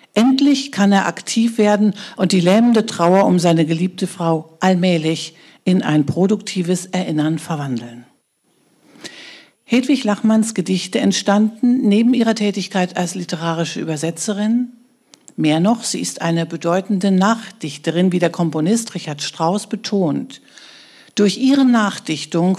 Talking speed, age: 120 wpm, 60-79